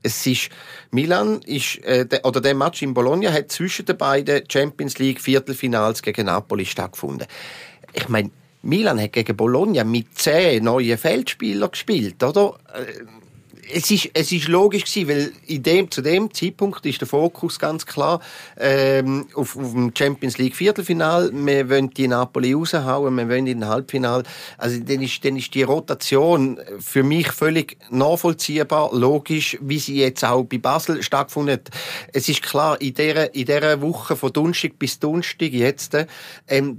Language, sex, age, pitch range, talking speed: German, male, 40-59, 125-155 Hz, 160 wpm